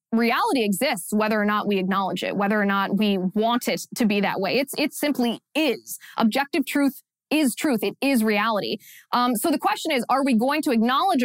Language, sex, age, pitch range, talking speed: English, female, 20-39, 200-245 Hz, 210 wpm